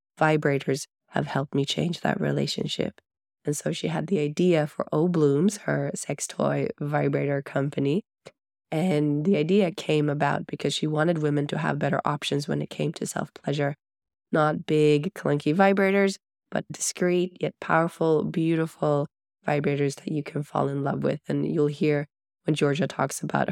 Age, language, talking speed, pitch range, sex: 20-39, English, 165 wpm, 145-165 Hz, female